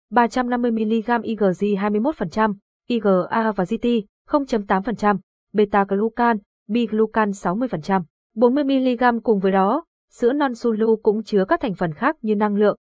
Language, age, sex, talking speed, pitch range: Vietnamese, 20-39, female, 115 wpm, 195-240 Hz